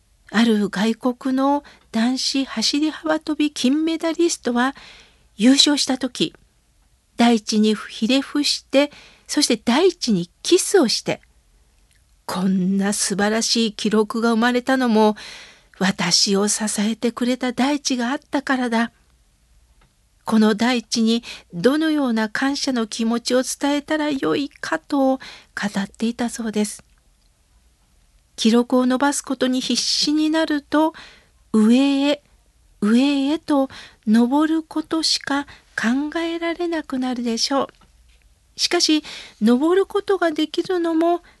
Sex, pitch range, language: female, 225-290 Hz, Japanese